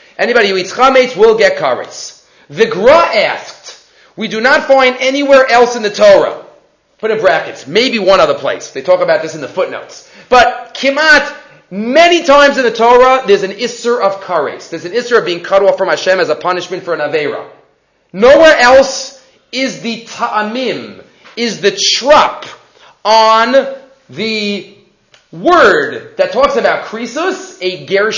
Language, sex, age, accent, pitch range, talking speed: English, male, 30-49, Canadian, 200-285 Hz, 165 wpm